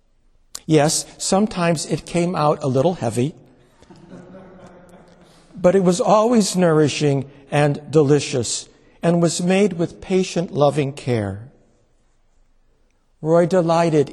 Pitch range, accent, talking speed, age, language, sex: 135-180 Hz, American, 100 wpm, 60-79, English, male